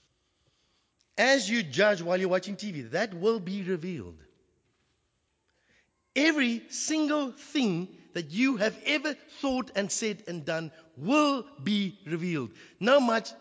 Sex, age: male, 60-79